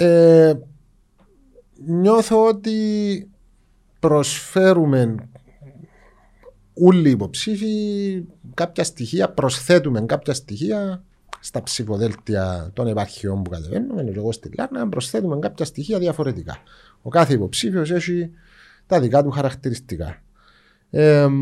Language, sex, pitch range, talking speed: Greek, male, 110-160 Hz, 90 wpm